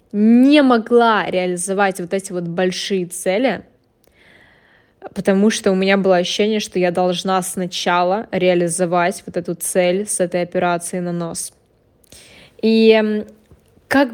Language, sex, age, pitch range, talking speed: Russian, female, 10-29, 185-230 Hz, 125 wpm